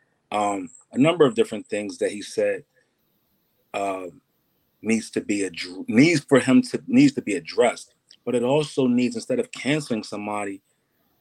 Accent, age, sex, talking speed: American, 40-59, male, 165 wpm